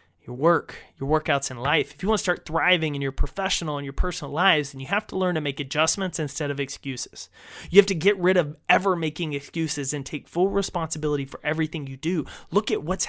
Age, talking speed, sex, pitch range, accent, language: 30-49, 230 wpm, male, 140-180 Hz, American, English